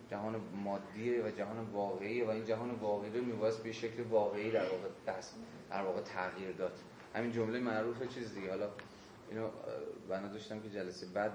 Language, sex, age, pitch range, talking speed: Persian, male, 30-49, 105-120 Hz, 170 wpm